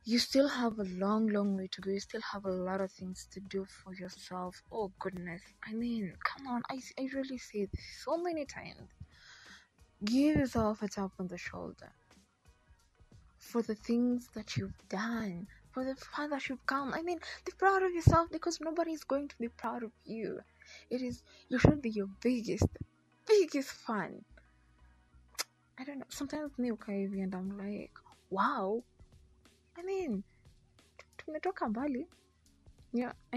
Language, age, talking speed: English, 20-39, 155 wpm